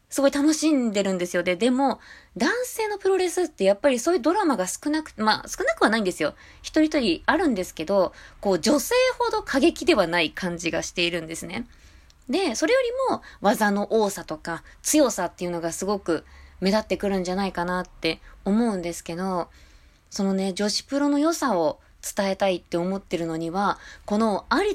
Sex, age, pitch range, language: female, 20-39, 190-300 Hz, Japanese